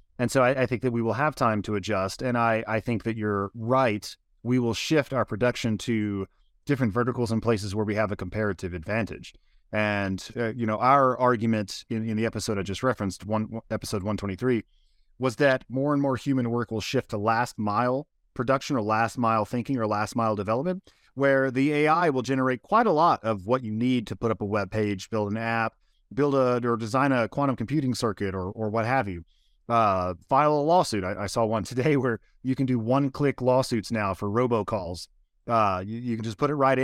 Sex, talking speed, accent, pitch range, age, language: male, 220 wpm, American, 110-135 Hz, 30-49, English